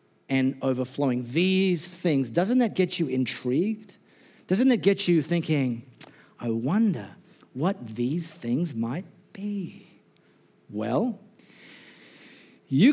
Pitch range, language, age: 155-240 Hz, English, 50-69